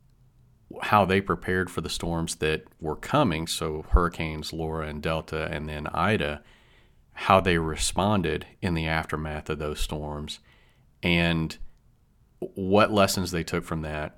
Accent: American